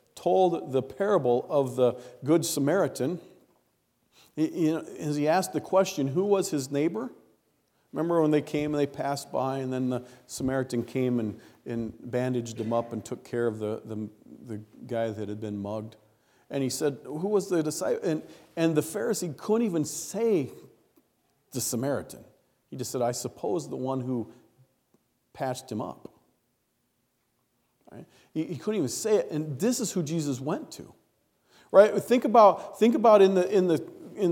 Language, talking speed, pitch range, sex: English, 170 wpm, 130-175 Hz, male